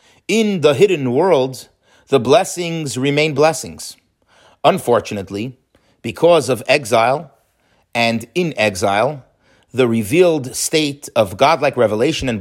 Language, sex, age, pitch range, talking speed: English, male, 40-59, 110-155 Hz, 105 wpm